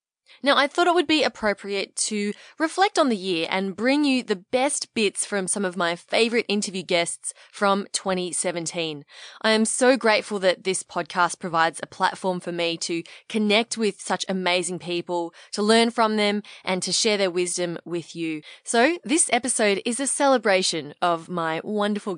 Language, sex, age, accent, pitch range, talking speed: English, female, 20-39, Australian, 175-225 Hz, 175 wpm